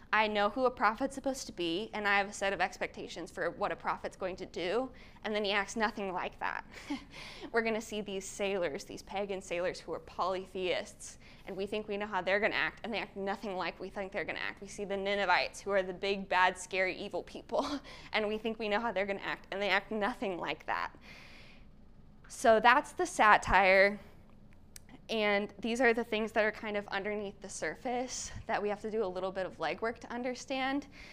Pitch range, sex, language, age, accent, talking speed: 195-235 Hz, female, English, 10-29, American, 225 wpm